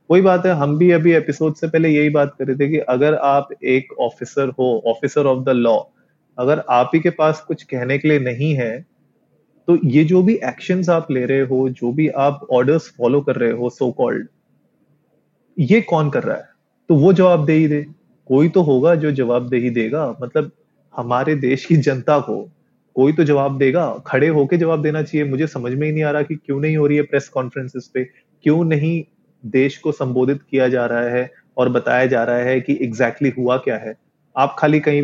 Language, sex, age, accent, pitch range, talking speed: Hindi, male, 30-49, native, 130-155 Hz, 220 wpm